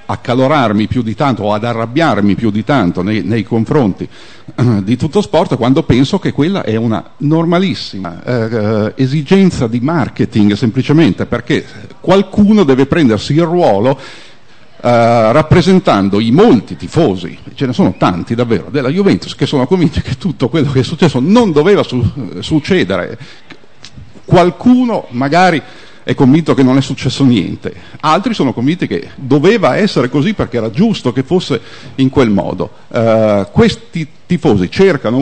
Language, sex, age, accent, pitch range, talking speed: Italian, male, 50-69, native, 115-170 Hz, 150 wpm